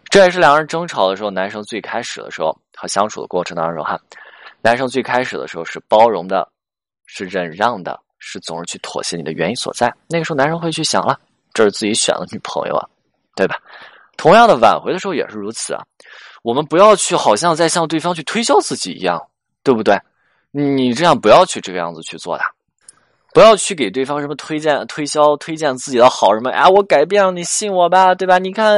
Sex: male